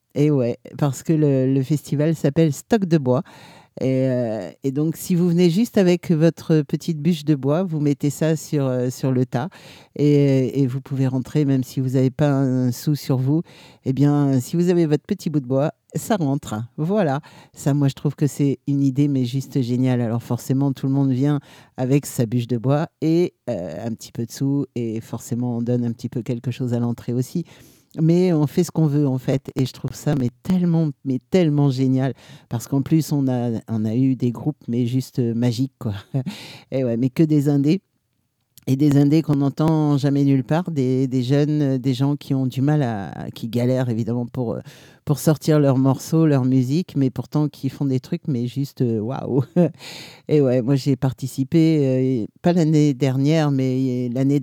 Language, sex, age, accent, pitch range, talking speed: French, male, 50-69, French, 130-150 Hz, 210 wpm